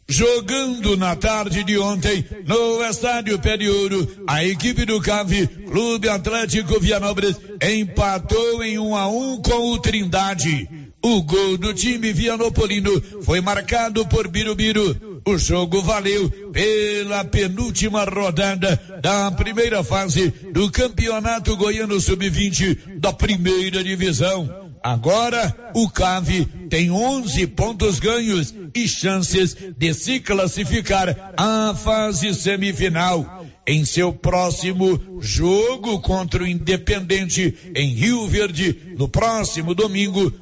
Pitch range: 180-215 Hz